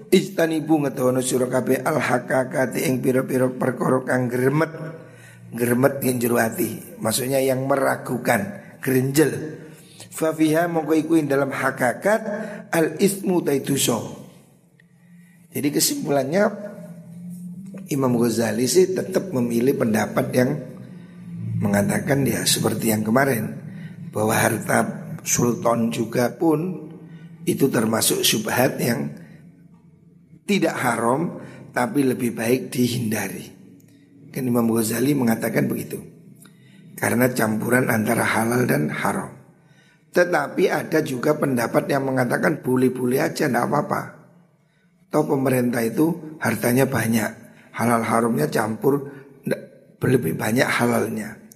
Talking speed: 100 wpm